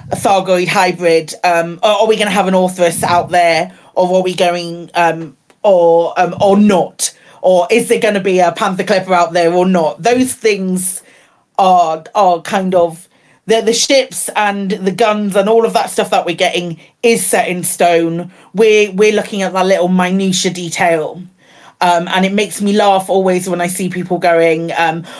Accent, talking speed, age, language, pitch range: British, 190 wpm, 40-59, English, 180-240 Hz